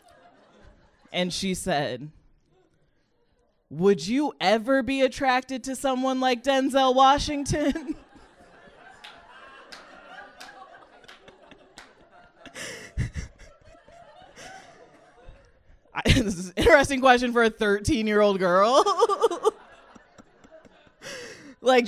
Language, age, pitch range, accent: English, 20-39, 180-260 Hz, American